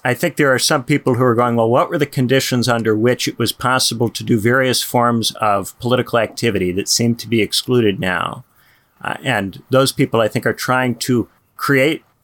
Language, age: English, 40-59